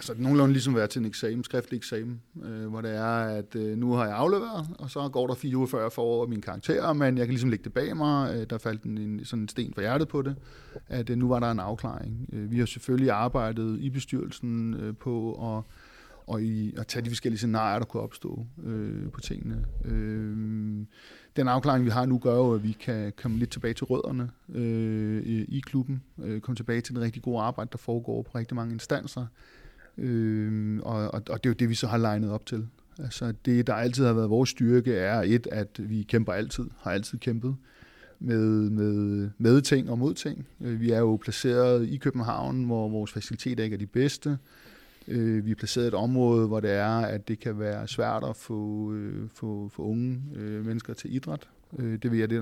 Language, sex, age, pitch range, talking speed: Danish, male, 30-49, 110-125 Hz, 210 wpm